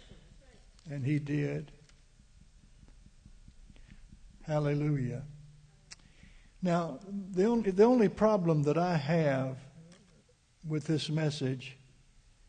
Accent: American